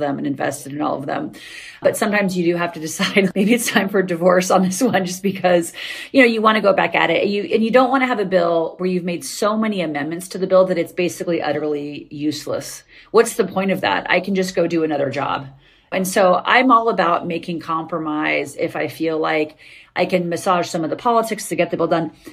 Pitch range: 165-195 Hz